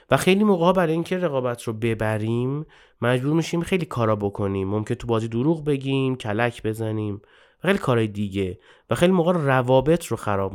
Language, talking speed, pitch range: Persian, 165 wpm, 105-140 Hz